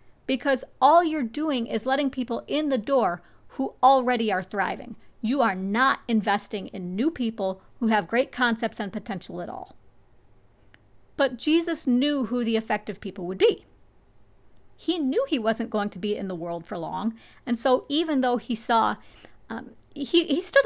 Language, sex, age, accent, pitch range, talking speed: English, female, 40-59, American, 200-265 Hz, 175 wpm